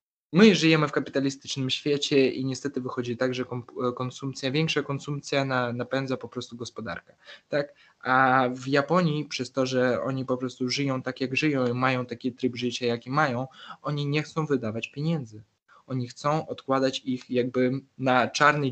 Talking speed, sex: 160 wpm, male